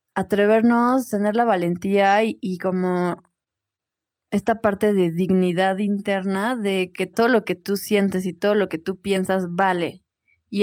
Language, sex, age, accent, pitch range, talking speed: Spanish, female, 20-39, Mexican, 185-210 Hz, 150 wpm